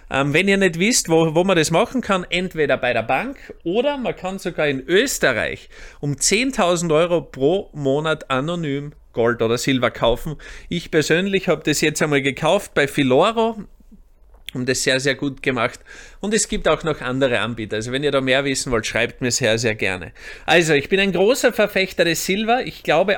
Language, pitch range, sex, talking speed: German, 130-180 Hz, male, 190 wpm